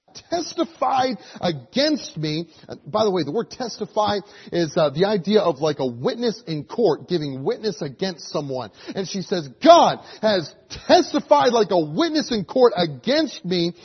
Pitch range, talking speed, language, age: 155-235 Hz, 160 wpm, English, 30-49